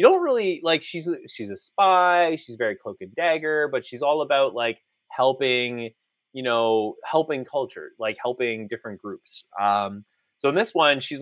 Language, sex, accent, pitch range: English, male, American, 110-150 Hz